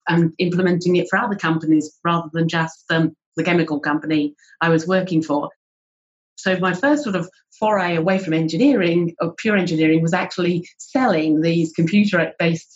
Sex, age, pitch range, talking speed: female, 40-59, 160-180 Hz, 160 wpm